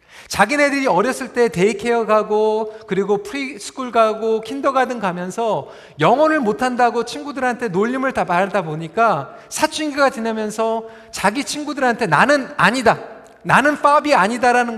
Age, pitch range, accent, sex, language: 40-59, 205-255 Hz, native, male, Korean